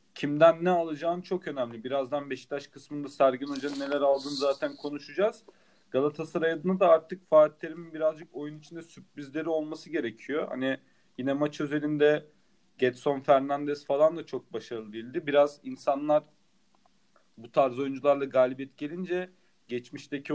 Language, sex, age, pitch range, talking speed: Turkish, male, 40-59, 135-155 Hz, 135 wpm